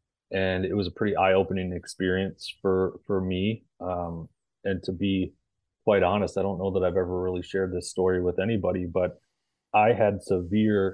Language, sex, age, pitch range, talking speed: English, male, 30-49, 90-100 Hz, 175 wpm